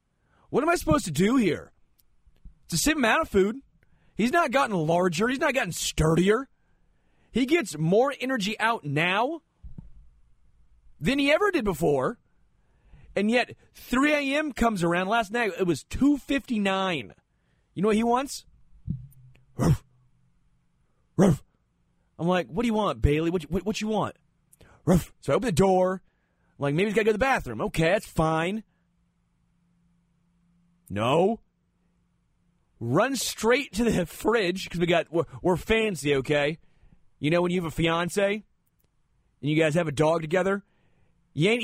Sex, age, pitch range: male, 30-49, 160-230 Hz